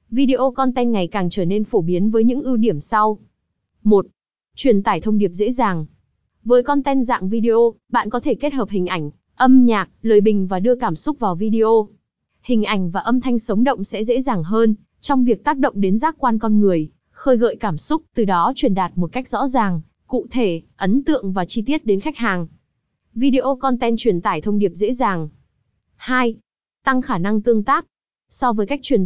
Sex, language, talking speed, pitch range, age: female, Vietnamese, 210 wpm, 200-250 Hz, 20-39